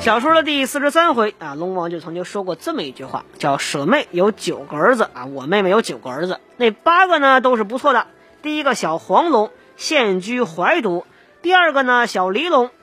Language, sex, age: Chinese, female, 20-39